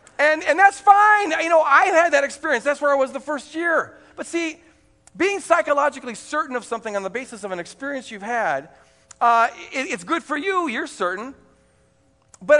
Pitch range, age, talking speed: 190-285 Hz, 40-59, 195 wpm